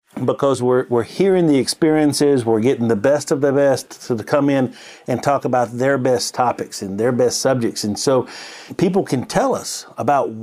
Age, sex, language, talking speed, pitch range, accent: 50-69, male, English, 190 wpm, 120-155 Hz, American